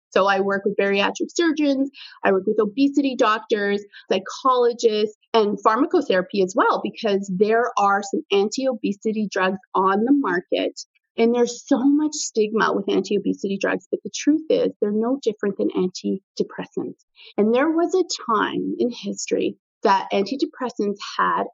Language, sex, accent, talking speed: English, female, American, 145 wpm